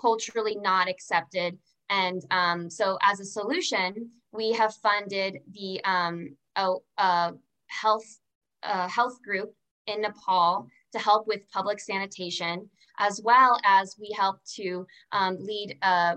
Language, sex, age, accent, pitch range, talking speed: English, female, 20-39, American, 180-210 Hz, 125 wpm